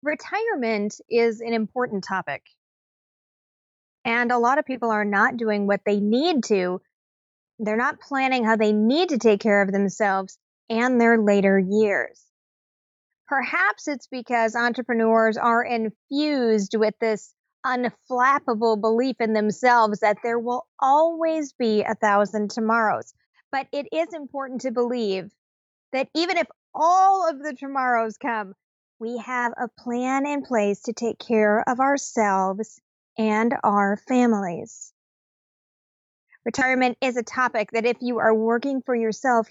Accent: American